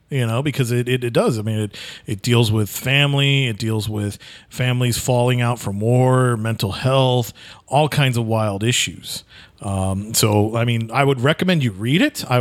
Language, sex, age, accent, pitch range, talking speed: English, male, 40-59, American, 110-135 Hz, 195 wpm